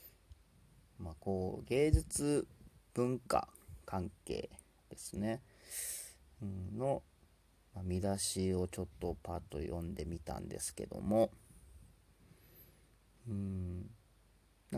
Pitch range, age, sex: 90-115 Hz, 40-59, male